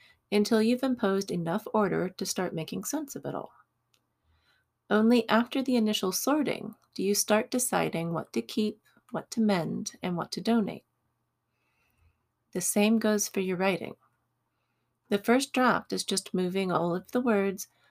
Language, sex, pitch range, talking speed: English, female, 185-230 Hz, 155 wpm